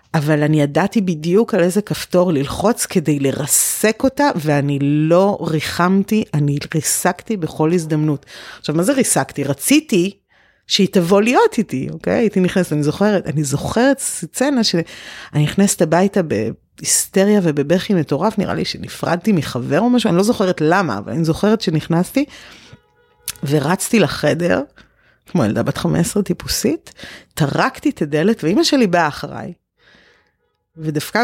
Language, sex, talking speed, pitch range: Hebrew, female, 135 wpm, 165-240 Hz